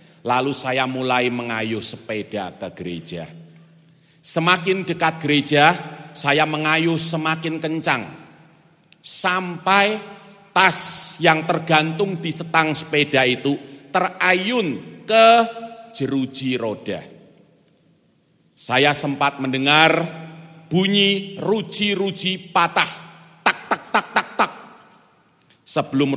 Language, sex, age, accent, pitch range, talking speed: Indonesian, male, 40-59, native, 115-165 Hz, 85 wpm